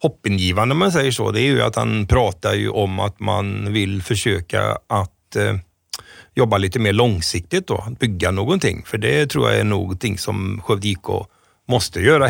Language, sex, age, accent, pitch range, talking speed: Swedish, male, 30-49, native, 95-120 Hz, 175 wpm